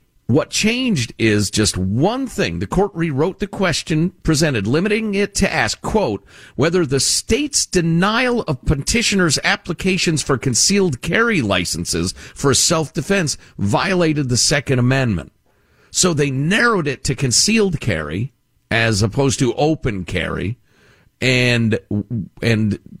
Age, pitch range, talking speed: 50-69, 110-165 Hz, 125 wpm